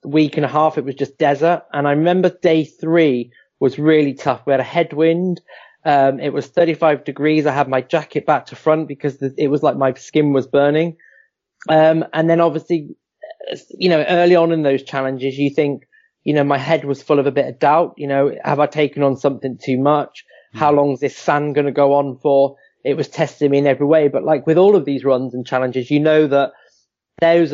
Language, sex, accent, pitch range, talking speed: English, male, British, 140-160 Hz, 225 wpm